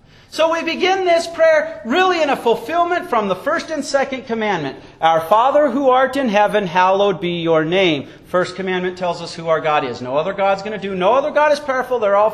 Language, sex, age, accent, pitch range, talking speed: English, male, 40-59, American, 165-255 Hz, 225 wpm